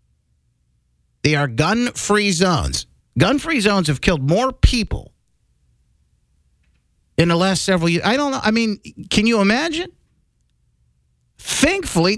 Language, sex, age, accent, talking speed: English, male, 50-69, American, 120 wpm